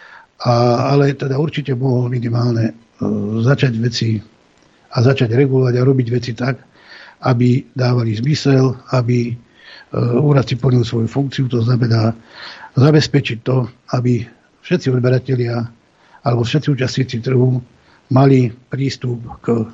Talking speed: 120 wpm